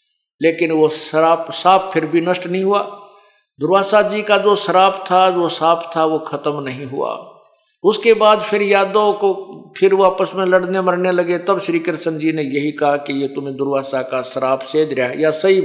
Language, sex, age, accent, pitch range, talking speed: Hindi, male, 50-69, native, 155-205 Hz, 190 wpm